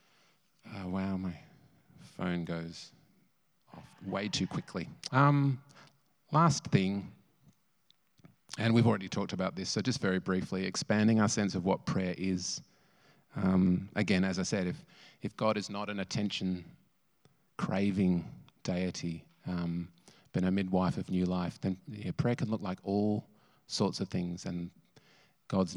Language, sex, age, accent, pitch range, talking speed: English, male, 30-49, Australian, 90-115 Hz, 140 wpm